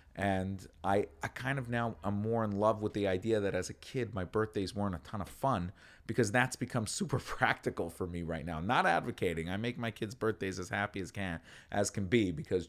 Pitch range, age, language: 85-110 Hz, 30-49, English